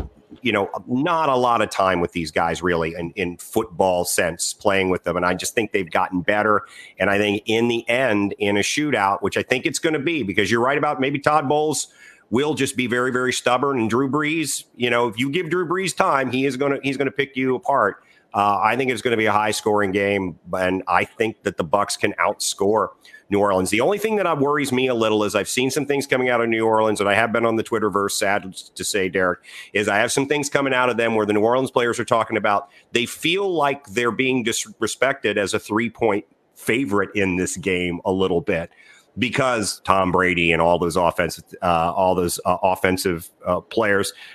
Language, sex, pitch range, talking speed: English, male, 95-130 Hz, 235 wpm